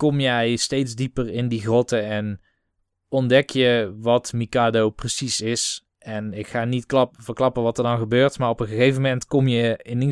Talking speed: 190 wpm